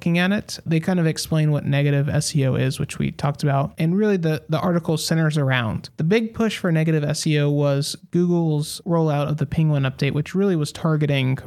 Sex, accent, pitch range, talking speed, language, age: male, American, 145-165 Hz, 200 wpm, English, 30-49